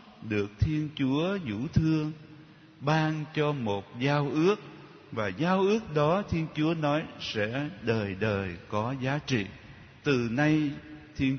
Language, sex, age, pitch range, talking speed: Vietnamese, male, 60-79, 110-165 Hz, 135 wpm